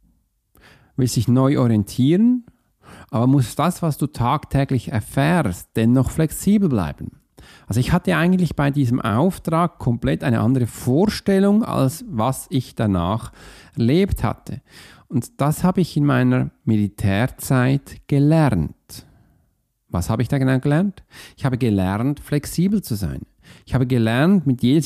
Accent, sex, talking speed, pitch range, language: German, male, 135 wpm, 110-155 Hz, German